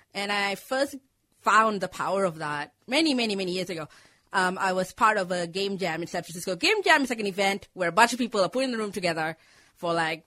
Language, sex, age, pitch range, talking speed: English, female, 20-39, 180-245 Hz, 250 wpm